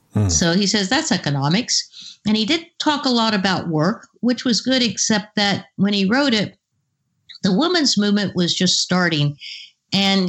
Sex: female